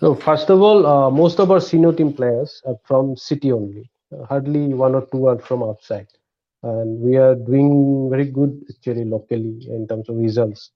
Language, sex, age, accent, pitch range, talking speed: English, male, 50-69, Indian, 115-145 Hz, 195 wpm